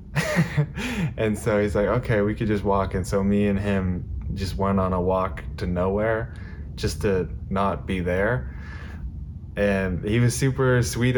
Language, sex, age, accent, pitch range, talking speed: English, male, 20-39, American, 85-105 Hz, 165 wpm